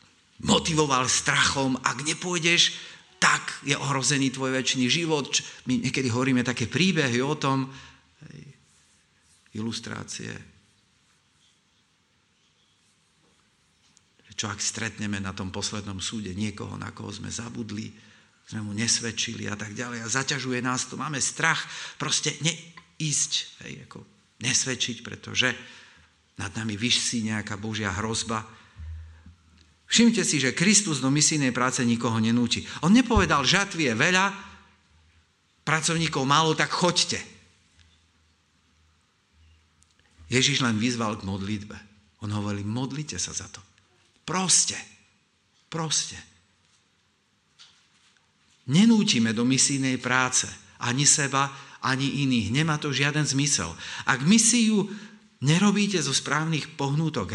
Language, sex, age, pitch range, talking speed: Slovak, male, 50-69, 105-145 Hz, 110 wpm